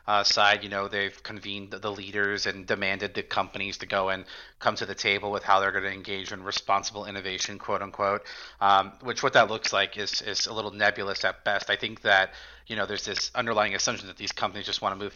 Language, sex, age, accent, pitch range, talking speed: English, male, 30-49, American, 95-105 Hz, 240 wpm